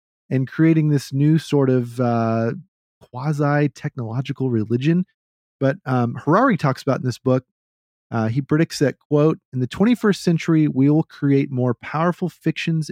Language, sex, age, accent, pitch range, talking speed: English, male, 40-59, American, 120-165 Hz, 150 wpm